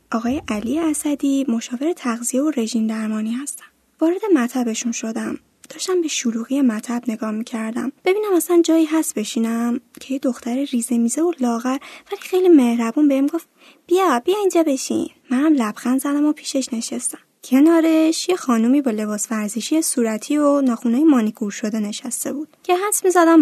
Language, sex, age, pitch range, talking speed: Persian, female, 10-29, 235-315 Hz, 155 wpm